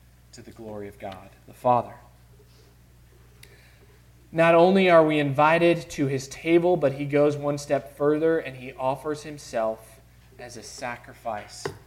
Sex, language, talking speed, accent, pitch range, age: male, English, 140 wpm, American, 110-150 Hz, 20-39